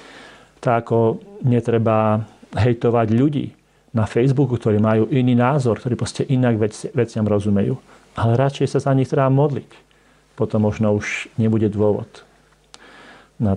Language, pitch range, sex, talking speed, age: Slovak, 100-120 Hz, male, 130 wpm, 40-59